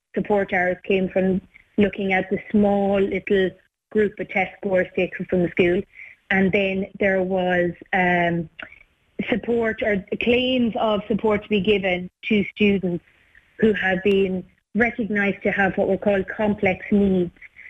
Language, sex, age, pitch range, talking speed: English, female, 30-49, 185-210 Hz, 145 wpm